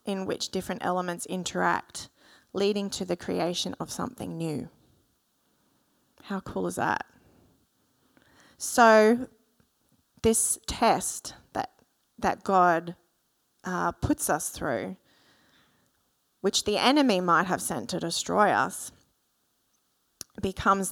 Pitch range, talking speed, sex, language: 180-220 Hz, 105 wpm, female, English